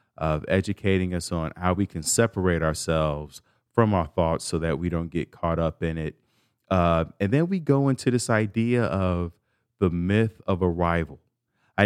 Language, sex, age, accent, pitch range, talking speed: English, male, 30-49, American, 90-120 Hz, 175 wpm